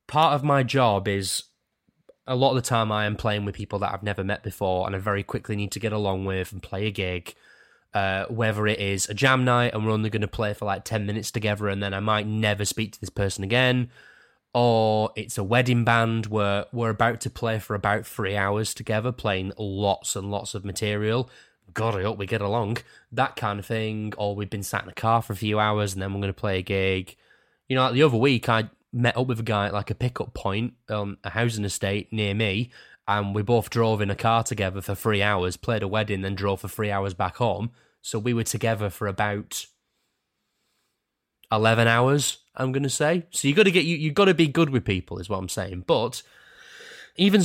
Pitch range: 100-125 Hz